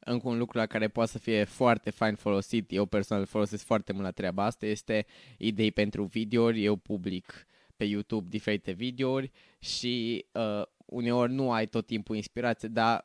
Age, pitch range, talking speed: 20-39, 110-125 Hz, 175 wpm